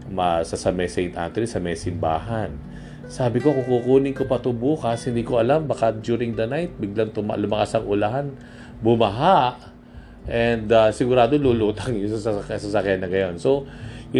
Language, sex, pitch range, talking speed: Filipino, male, 105-140 Hz, 155 wpm